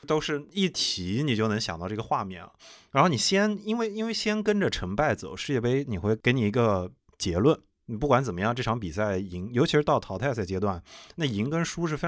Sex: male